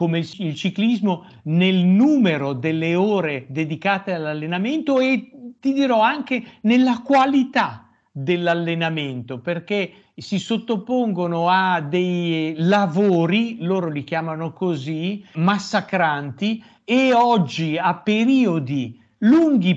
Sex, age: male, 50-69